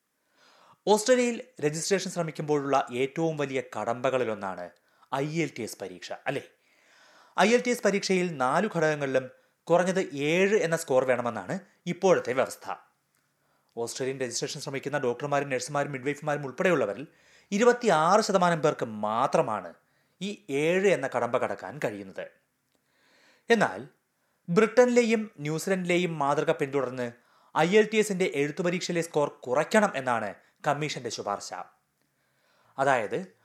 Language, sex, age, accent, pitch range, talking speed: Malayalam, male, 30-49, native, 140-190 Hz, 100 wpm